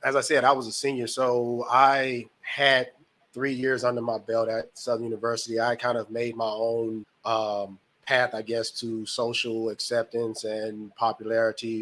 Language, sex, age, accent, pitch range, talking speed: English, male, 20-39, American, 115-130 Hz, 170 wpm